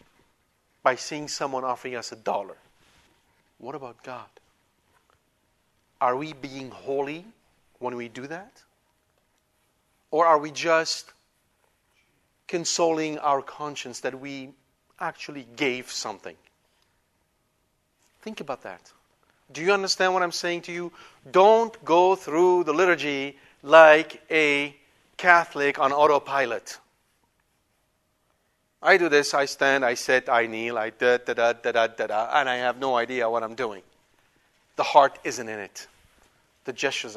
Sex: male